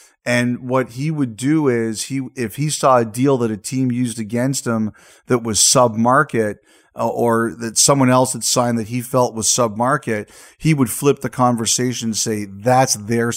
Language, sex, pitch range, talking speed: English, male, 115-135 Hz, 200 wpm